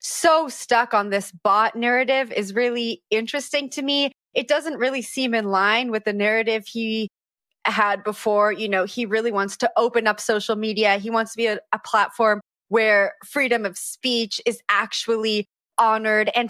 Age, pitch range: 20-39, 205-250 Hz